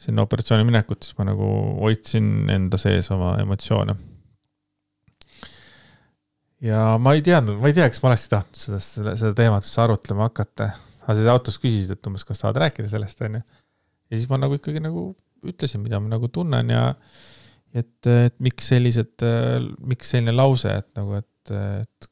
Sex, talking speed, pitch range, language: male, 175 wpm, 100-125 Hz, English